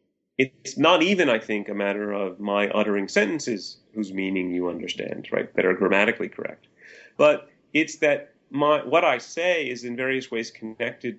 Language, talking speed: English, 165 wpm